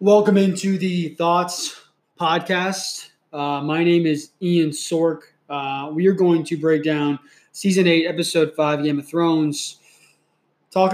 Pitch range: 145-170 Hz